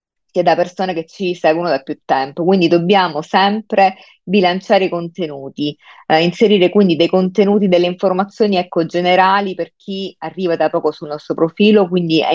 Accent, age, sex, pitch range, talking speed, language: native, 30-49, female, 160-190 Hz, 165 wpm, Italian